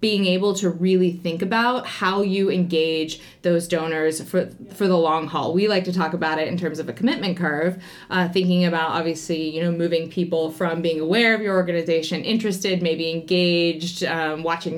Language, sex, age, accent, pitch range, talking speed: English, female, 20-39, American, 160-185 Hz, 190 wpm